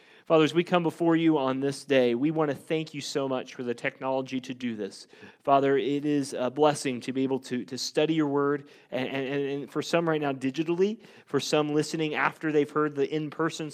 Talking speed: 225 wpm